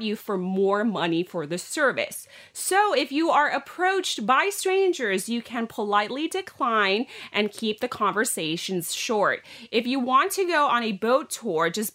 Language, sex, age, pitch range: Thai, female, 30-49, 200-270 Hz